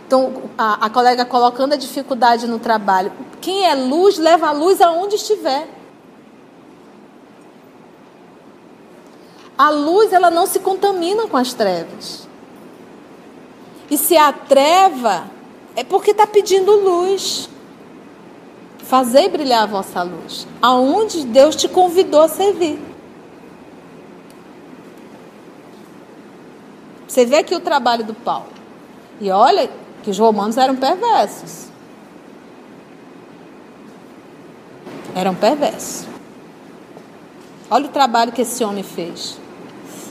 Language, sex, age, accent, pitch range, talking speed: Portuguese, female, 40-59, Brazilian, 235-360 Hz, 105 wpm